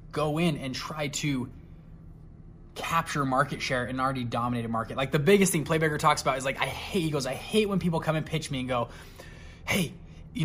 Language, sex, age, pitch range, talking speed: English, male, 20-39, 130-170 Hz, 210 wpm